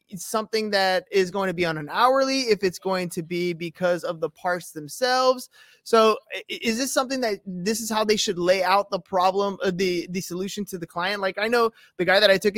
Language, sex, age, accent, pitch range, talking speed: English, male, 20-39, American, 175-210 Hz, 240 wpm